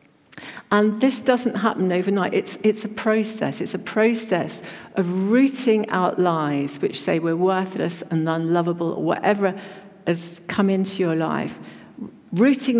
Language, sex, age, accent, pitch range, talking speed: English, female, 50-69, British, 170-230 Hz, 140 wpm